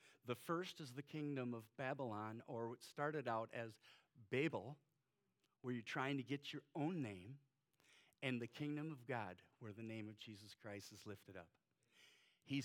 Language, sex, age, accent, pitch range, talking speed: English, male, 50-69, American, 125-175 Hz, 170 wpm